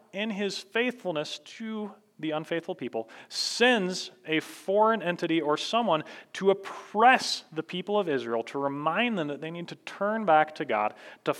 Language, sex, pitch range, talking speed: English, male, 145-200 Hz, 165 wpm